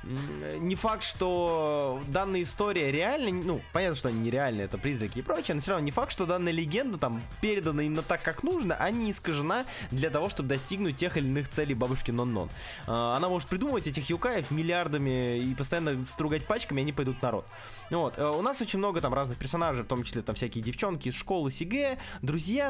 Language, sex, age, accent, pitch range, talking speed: Russian, male, 20-39, native, 125-175 Hz, 200 wpm